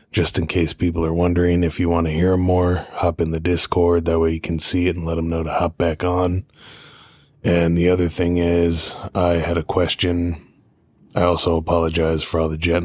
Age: 20-39